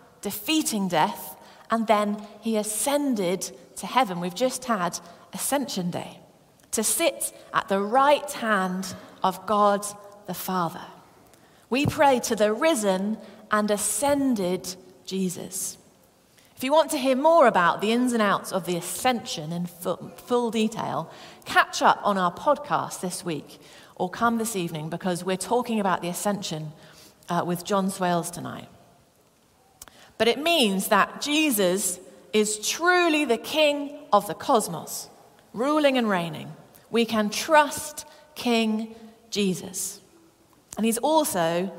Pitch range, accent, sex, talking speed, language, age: 185-245 Hz, British, female, 135 wpm, English, 30-49